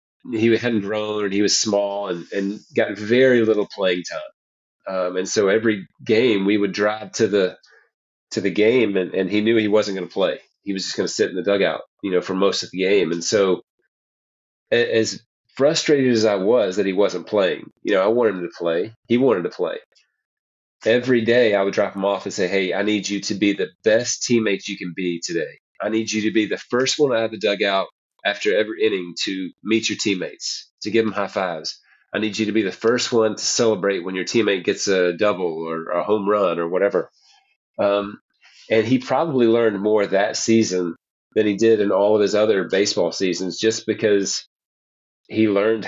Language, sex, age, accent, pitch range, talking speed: English, male, 30-49, American, 100-115 Hz, 215 wpm